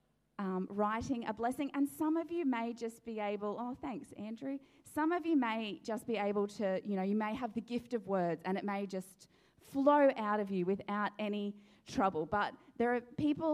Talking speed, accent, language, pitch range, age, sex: 210 wpm, Australian, English, 200-265 Hz, 20-39, female